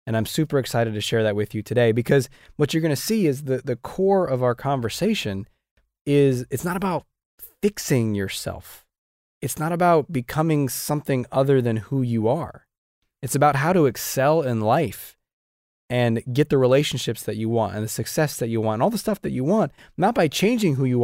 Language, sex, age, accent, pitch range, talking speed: English, male, 20-39, American, 110-140 Hz, 205 wpm